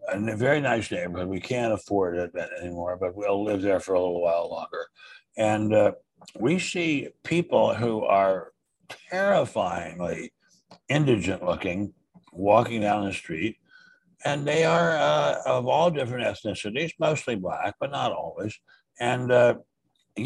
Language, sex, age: English, male, 60-79